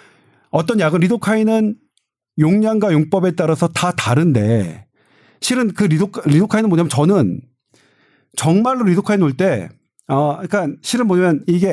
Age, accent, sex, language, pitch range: 40-59, native, male, Korean, 150-215 Hz